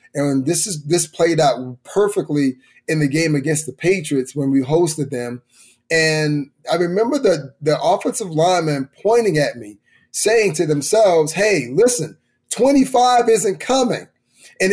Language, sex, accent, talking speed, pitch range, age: English, male, American, 150 wpm, 150-200 Hz, 30-49